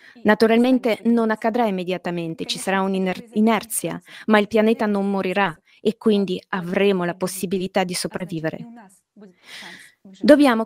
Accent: native